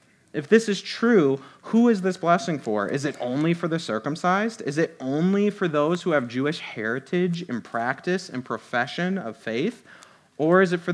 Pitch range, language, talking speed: 125-175 Hz, English, 185 wpm